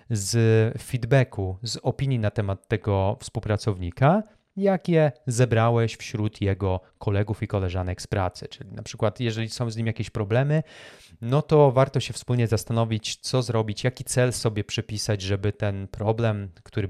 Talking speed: 150 wpm